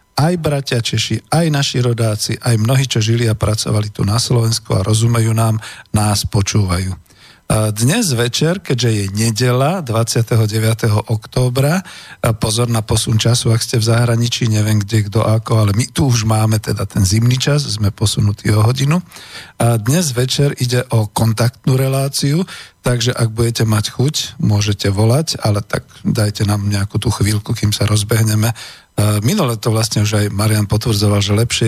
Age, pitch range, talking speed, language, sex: 50-69, 105-120 Hz, 165 wpm, Slovak, male